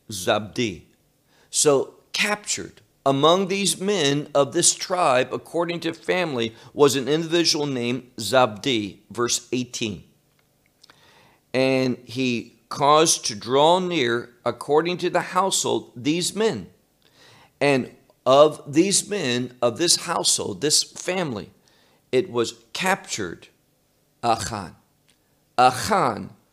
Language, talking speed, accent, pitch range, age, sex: English, 100 wpm, American, 120-165 Hz, 50-69, male